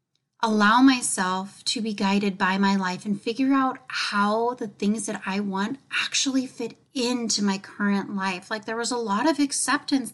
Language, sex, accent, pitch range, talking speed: English, female, American, 200-255 Hz, 180 wpm